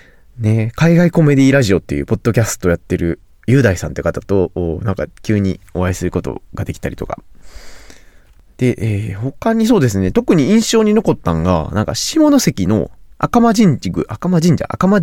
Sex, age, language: male, 20-39, Japanese